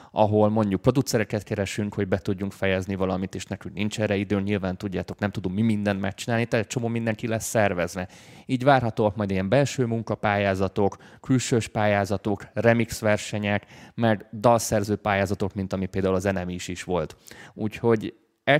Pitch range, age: 100-115 Hz, 20-39